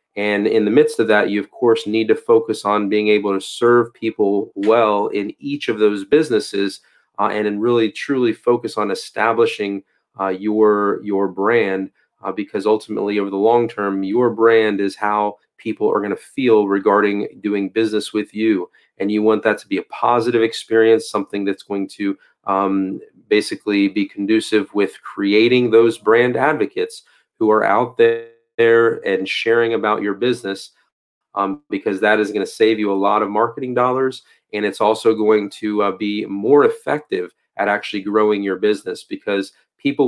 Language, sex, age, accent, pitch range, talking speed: English, male, 30-49, American, 100-115 Hz, 175 wpm